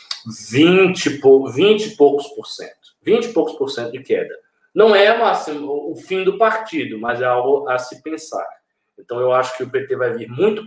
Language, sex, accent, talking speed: Portuguese, male, Brazilian, 210 wpm